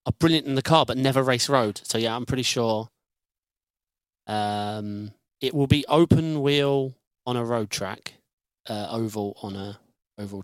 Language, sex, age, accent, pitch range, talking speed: English, male, 30-49, British, 115-155 Hz, 165 wpm